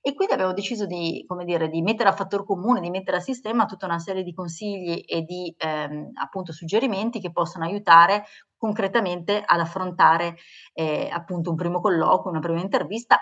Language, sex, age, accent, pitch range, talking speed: Italian, female, 30-49, native, 165-195 Hz, 180 wpm